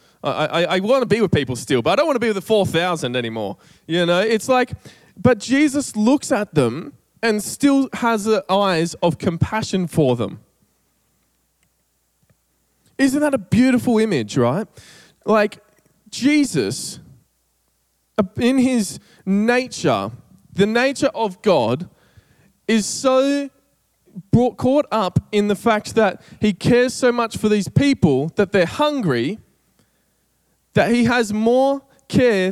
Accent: Australian